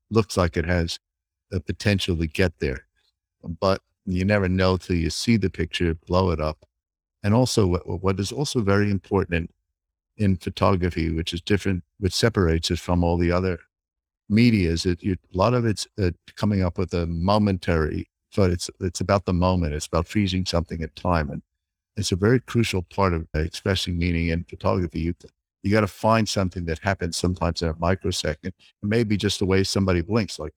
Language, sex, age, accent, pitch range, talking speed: English, male, 50-69, American, 85-100 Hz, 190 wpm